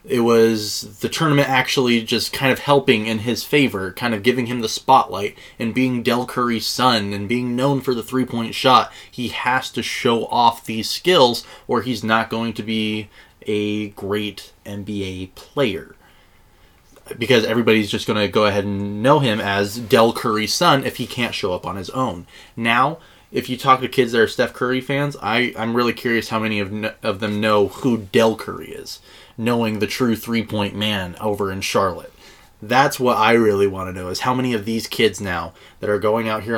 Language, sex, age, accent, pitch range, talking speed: English, male, 20-39, American, 100-120 Hz, 195 wpm